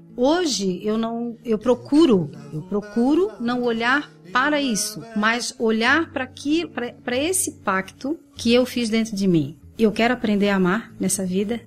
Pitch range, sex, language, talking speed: 180-235 Hz, female, Portuguese, 145 wpm